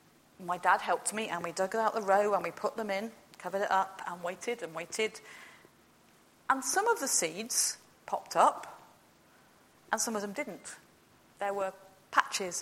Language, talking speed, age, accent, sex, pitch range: English, 175 wpm, 40-59, British, female, 195-255 Hz